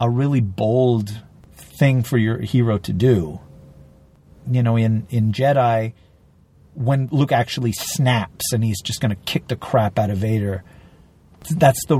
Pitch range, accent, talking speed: 110-165 Hz, American, 155 wpm